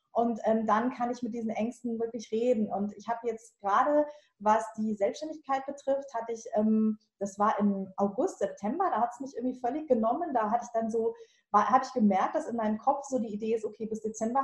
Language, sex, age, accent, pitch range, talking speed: German, female, 20-39, German, 205-245 Hz, 220 wpm